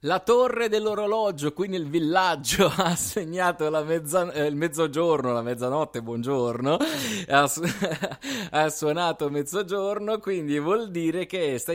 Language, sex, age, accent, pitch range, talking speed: Italian, male, 30-49, native, 120-170 Hz, 130 wpm